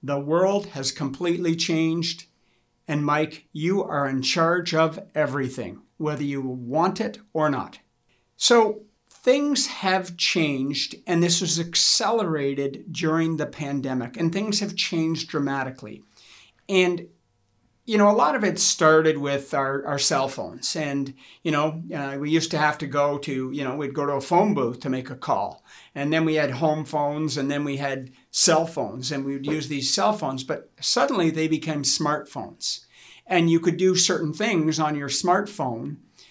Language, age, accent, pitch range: English, 60-79, American, 140-180 Hz